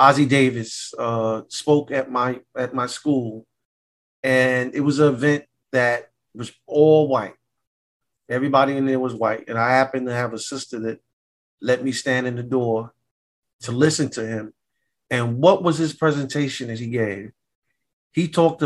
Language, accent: English, American